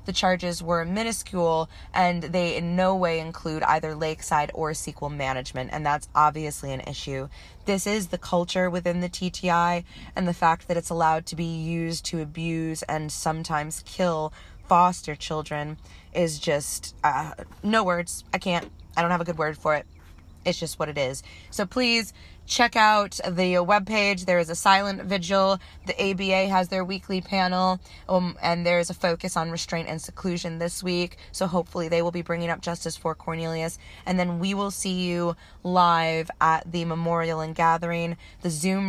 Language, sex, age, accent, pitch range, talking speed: English, female, 20-39, American, 160-185 Hz, 180 wpm